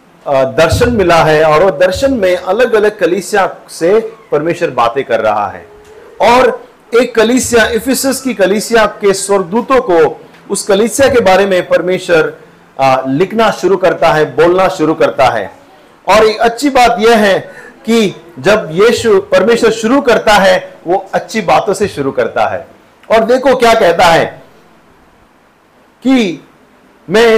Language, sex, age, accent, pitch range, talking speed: Hindi, male, 40-59, native, 165-220 Hz, 140 wpm